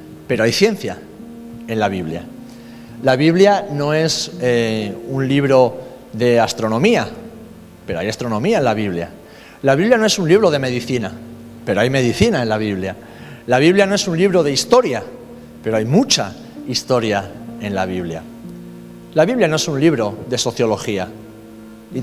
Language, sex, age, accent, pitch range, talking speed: Spanish, male, 40-59, Spanish, 110-170 Hz, 160 wpm